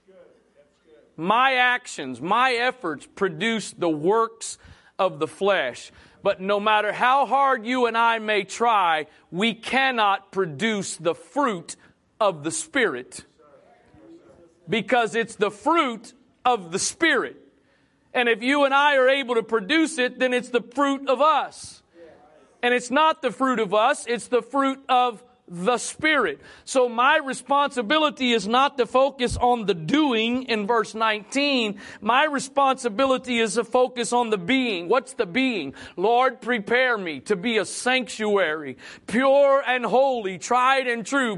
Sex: male